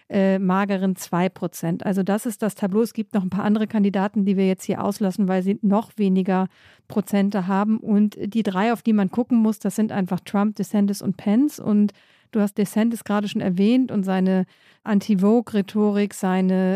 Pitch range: 195-230 Hz